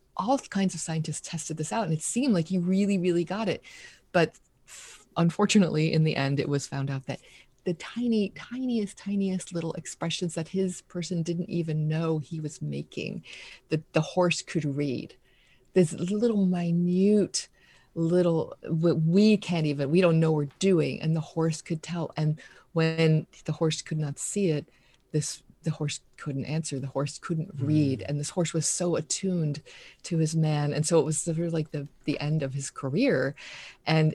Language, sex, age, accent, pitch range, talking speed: English, female, 30-49, American, 140-170 Hz, 180 wpm